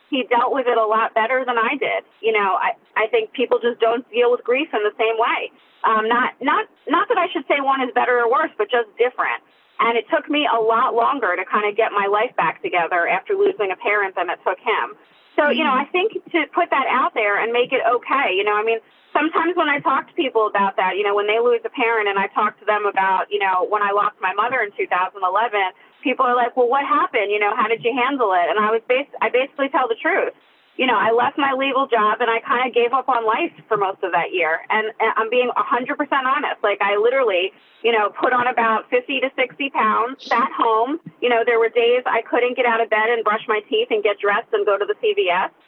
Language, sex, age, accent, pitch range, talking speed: English, female, 30-49, American, 220-275 Hz, 255 wpm